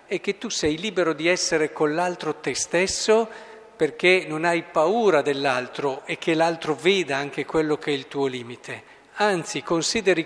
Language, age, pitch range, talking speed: Italian, 50-69, 135-180 Hz, 170 wpm